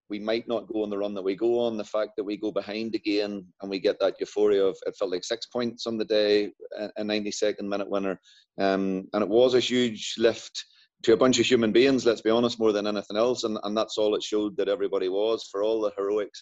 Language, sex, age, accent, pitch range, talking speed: English, male, 30-49, British, 100-115 Hz, 250 wpm